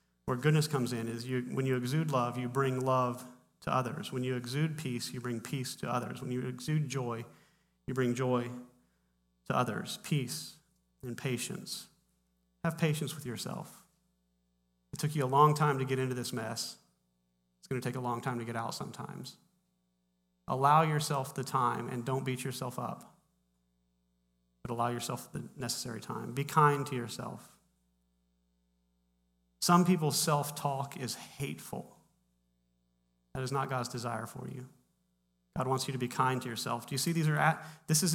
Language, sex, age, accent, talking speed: English, male, 30-49, American, 170 wpm